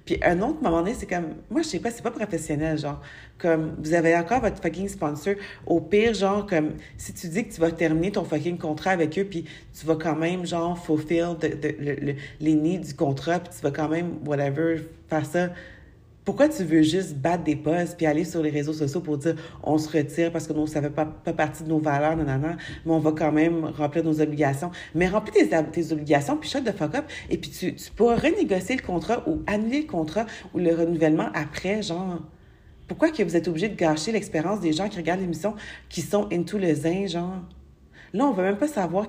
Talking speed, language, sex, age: 240 wpm, English, female, 40-59